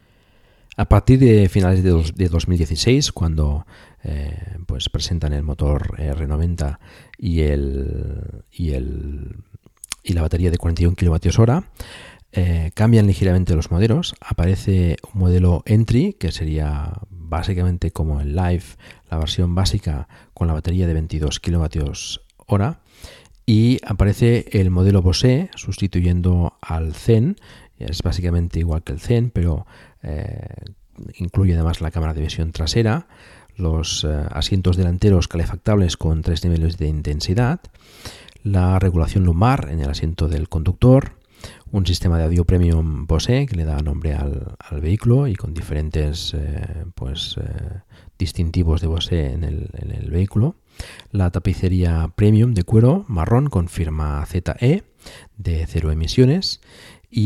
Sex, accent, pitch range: male, Spanish, 80-100 Hz